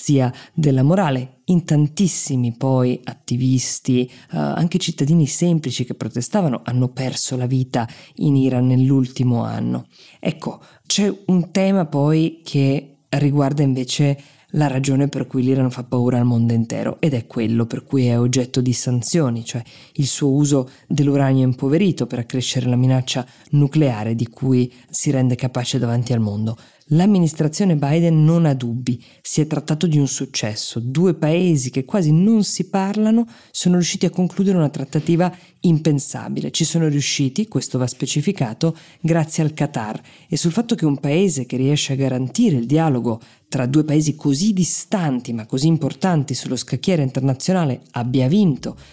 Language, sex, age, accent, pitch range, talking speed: Italian, female, 20-39, native, 125-165 Hz, 155 wpm